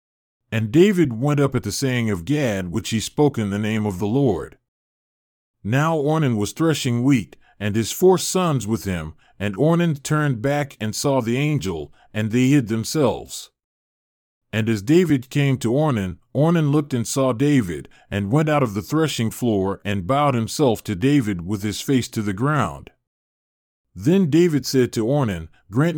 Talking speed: 175 wpm